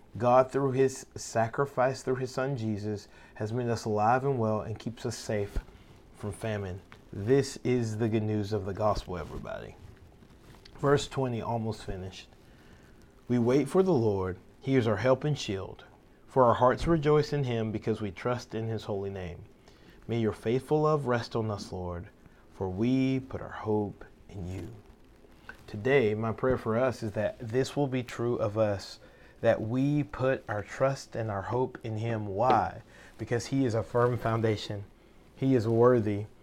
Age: 30-49